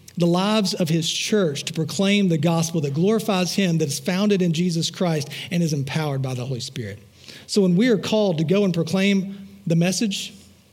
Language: English